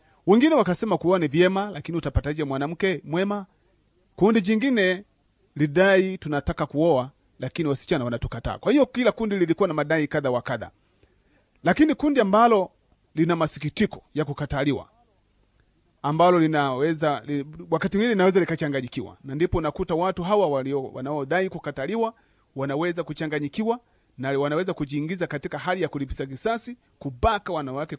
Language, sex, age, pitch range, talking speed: Swahili, male, 40-59, 140-190 Hz, 125 wpm